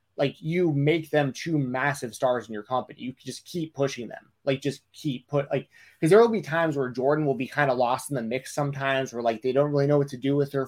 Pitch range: 130-165 Hz